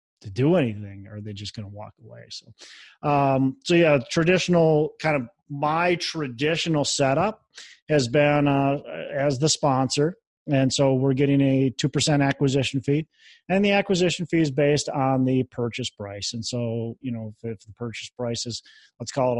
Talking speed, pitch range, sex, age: 180 wpm, 120-145 Hz, male, 30-49